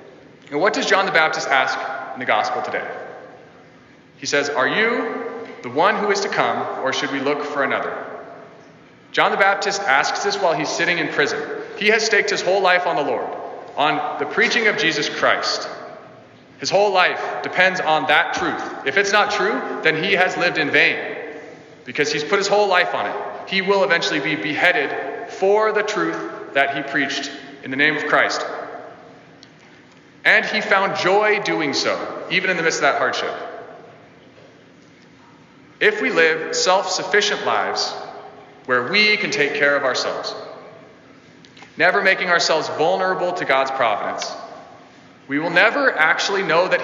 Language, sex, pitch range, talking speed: English, male, 150-225 Hz, 170 wpm